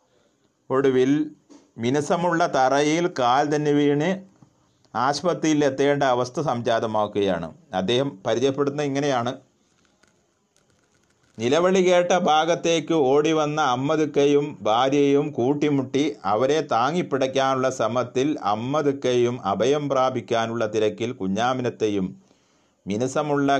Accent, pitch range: native, 110-145 Hz